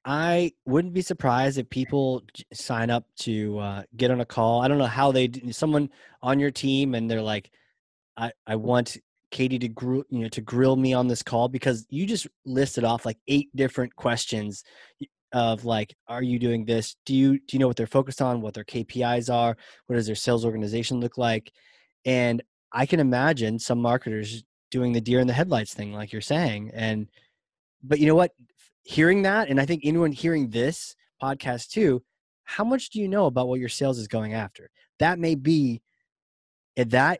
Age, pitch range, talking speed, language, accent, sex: 20-39, 115-150 Hz, 200 wpm, English, American, male